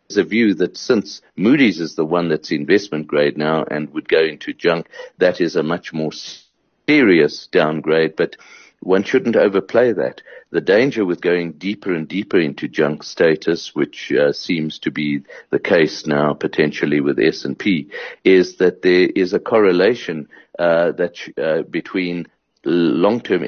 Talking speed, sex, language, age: 155 wpm, male, English, 60-79